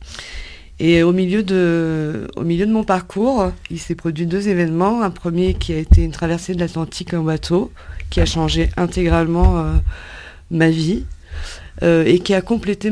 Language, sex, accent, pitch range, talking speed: French, female, French, 140-175 Hz, 170 wpm